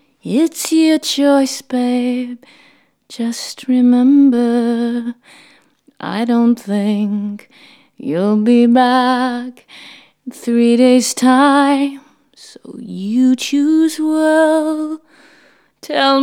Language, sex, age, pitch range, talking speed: English, female, 20-39, 240-290 Hz, 80 wpm